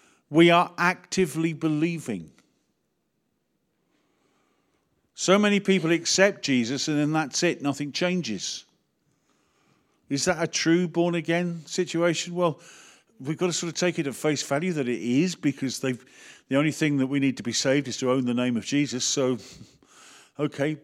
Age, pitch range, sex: 50-69, 130-175 Hz, male